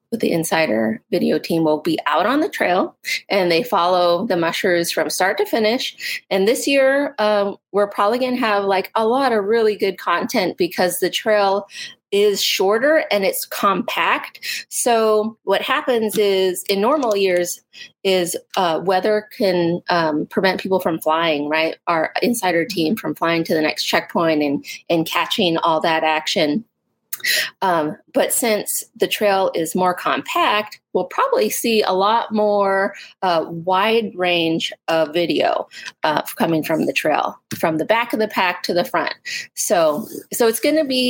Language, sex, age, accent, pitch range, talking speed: English, female, 30-49, American, 170-235 Hz, 170 wpm